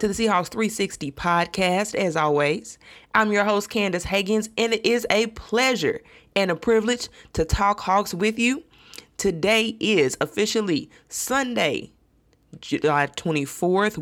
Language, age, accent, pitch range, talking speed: English, 20-39, American, 155-210 Hz, 135 wpm